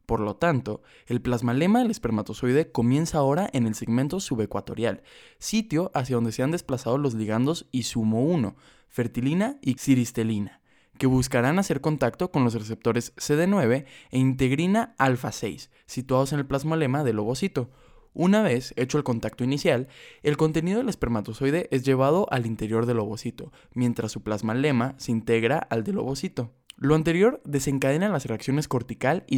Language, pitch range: Spanish, 120-155 Hz